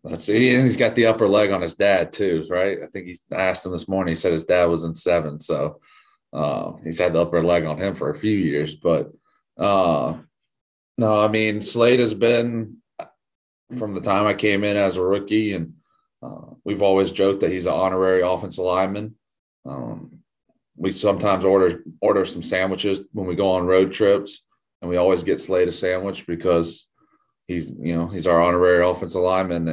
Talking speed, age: 195 wpm, 30-49